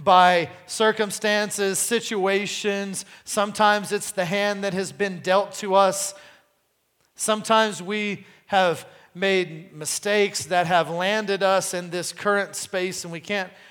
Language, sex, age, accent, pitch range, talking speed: English, male, 40-59, American, 170-210 Hz, 125 wpm